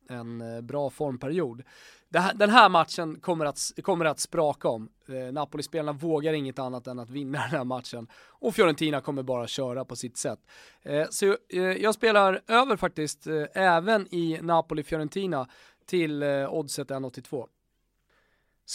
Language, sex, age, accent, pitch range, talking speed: English, male, 20-39, Swedish, 145-180 Hz, 130 wpm